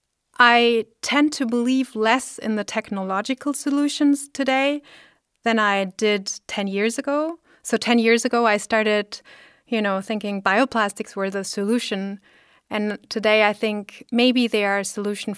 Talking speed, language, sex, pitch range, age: 150 wpm, English, female, 200-245 Hz, 30-49